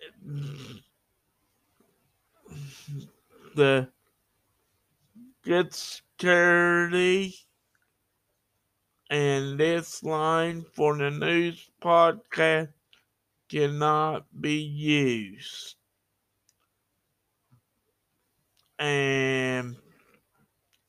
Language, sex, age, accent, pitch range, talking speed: English, male, 60-79, American, 110-165 Hz, 40 wpm